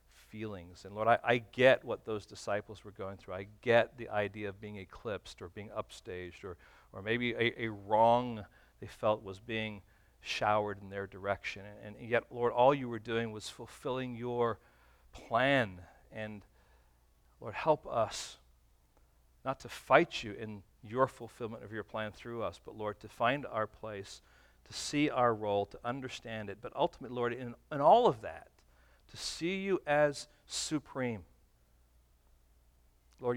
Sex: male